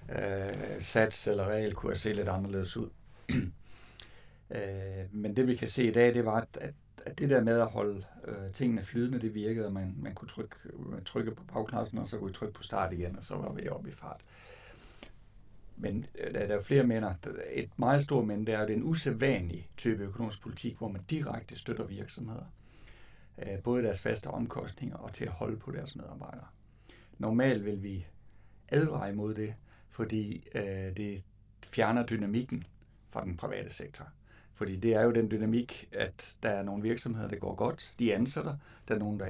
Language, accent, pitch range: Danish, native, 100-120 Hz